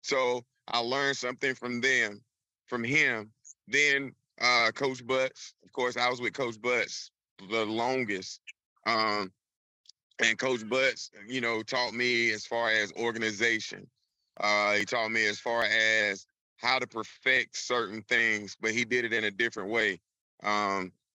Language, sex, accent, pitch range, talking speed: English, male, American, 105-125 Hz, 155 wpm